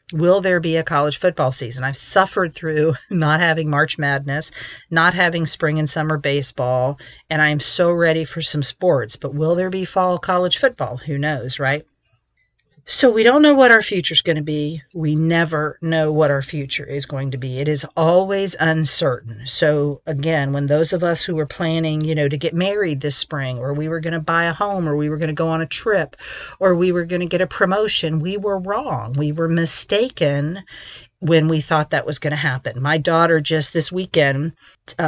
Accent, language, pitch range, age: American, English, 145-175 Hz, 50-69